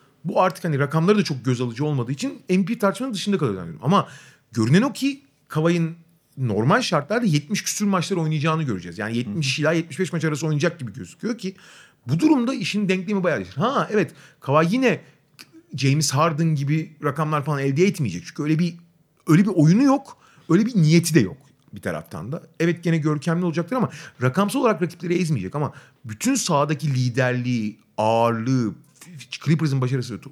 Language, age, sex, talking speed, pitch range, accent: Turkish, 40-59, male, 170 wpm, 135-185 Hz, native